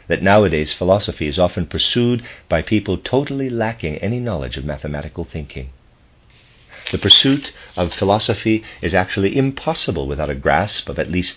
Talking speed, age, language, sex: 150 wpm, 50-69, English, male